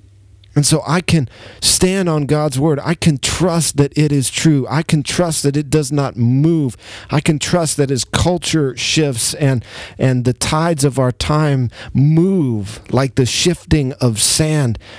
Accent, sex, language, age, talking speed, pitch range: American, male, English, 40-59, 170 wpm, 100-145 Hz